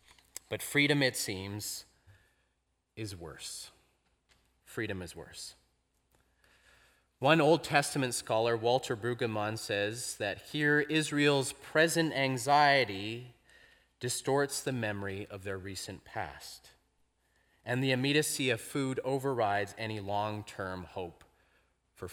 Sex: male